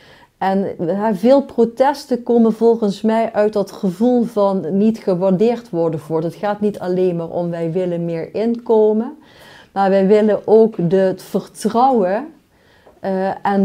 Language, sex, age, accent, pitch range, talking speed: Dutch, female, 40-59, Dutch, 185-220 Hz, 135 wpm